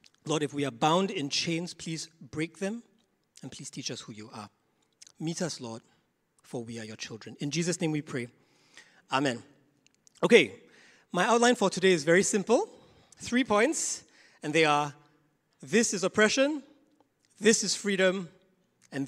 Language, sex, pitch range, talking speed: English, male, 145-195 Hz, 160 wpm